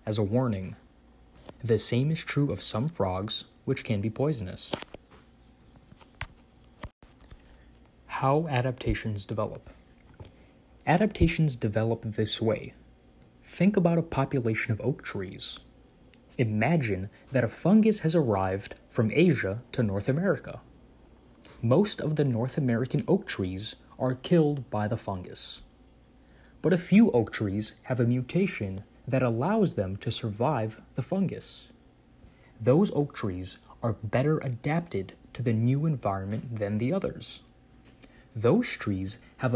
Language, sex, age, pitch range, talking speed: English, male, 30-49, 110-150 Hz, 125 wpm